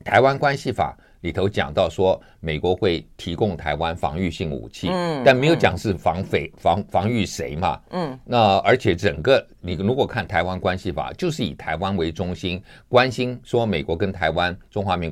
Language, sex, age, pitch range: Chinese, male, 60-79, 80-105 Hz